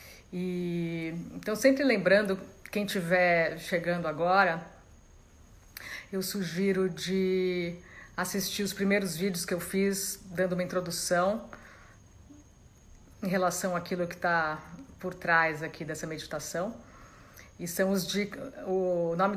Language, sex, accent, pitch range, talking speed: Portuguese, female, Brazilian, 175-195 Hz, 115 wpm